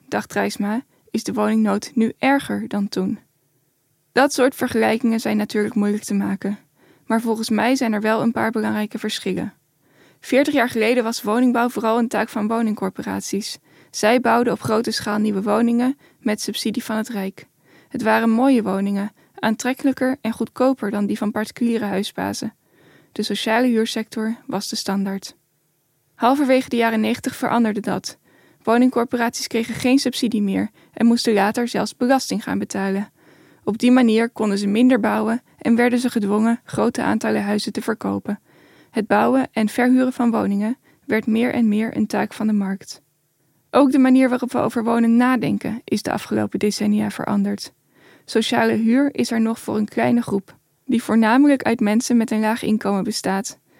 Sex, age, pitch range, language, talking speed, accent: female, 10-29, 205-240 Hz, Dutch, 165 wpm, Dutch